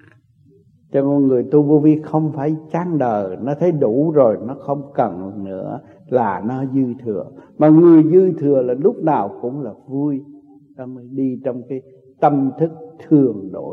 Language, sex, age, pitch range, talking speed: Vietnamese, male, 60-79, 130-160 Hz, 175 wpm